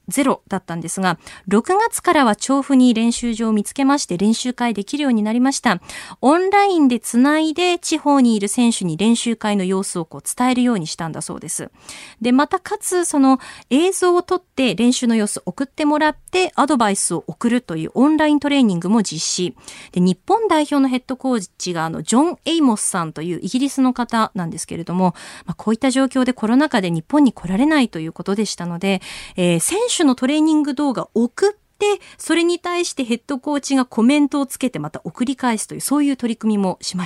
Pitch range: 200-295 Hz